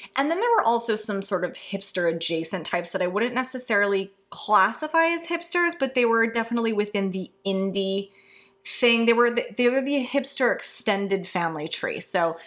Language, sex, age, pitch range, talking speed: English, female, 20-39, 185-245 Hz, 170 wpm